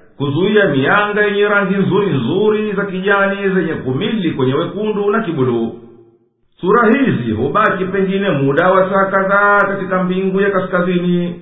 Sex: male